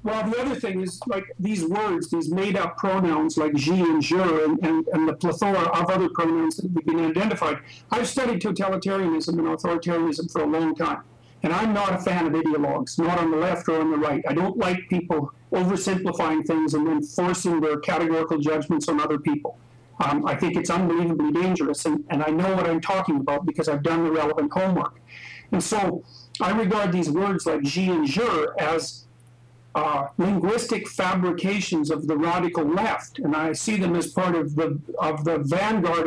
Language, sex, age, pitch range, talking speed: English, male, 50-69, 155-185 Hz, 185 wpm